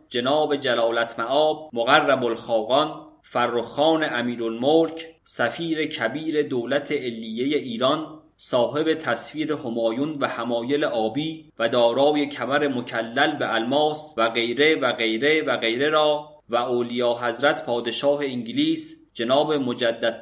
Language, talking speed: English, 120 wpm